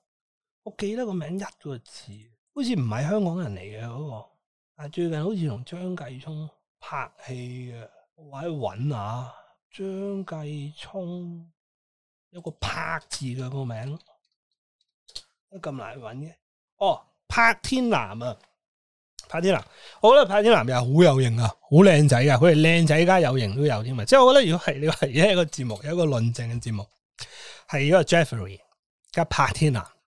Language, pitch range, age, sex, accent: Chinese, 120-175 Hz, 30-49, male, native